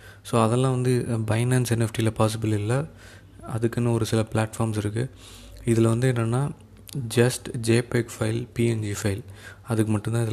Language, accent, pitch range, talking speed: Tamil, native, 105-115 Hz, 130 wpm